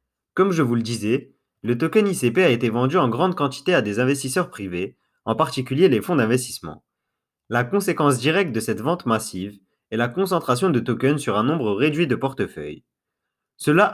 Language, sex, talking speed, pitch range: French, male, 180 wpm, 115-160 Hz